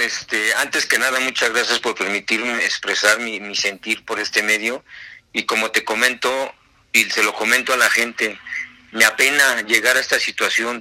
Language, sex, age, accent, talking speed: Spanish, male, 50-69, Mexican, 170 wpm